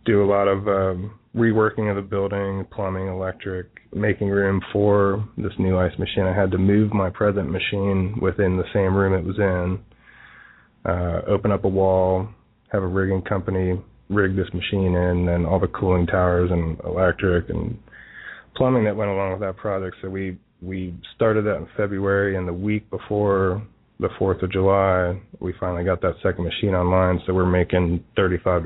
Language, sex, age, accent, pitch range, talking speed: English, male, 20-39, American, 90-100 Hz, 180 wpm